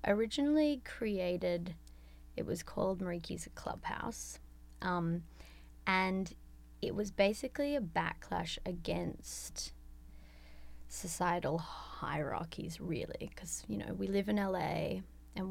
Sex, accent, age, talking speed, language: female, Australian, 20-39, 100 wpm, English